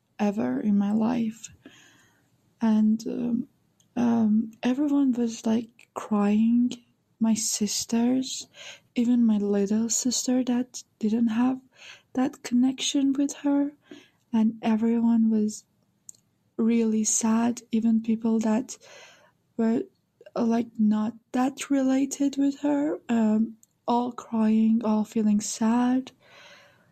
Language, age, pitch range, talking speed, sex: English, 20-39, 220-250 Hz, 100 wpm, female